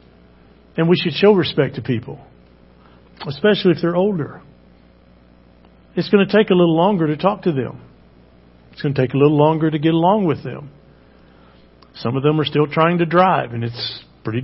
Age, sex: 50-69, male